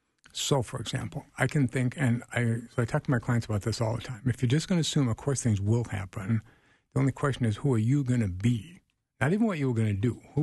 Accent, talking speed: American, 275 wpm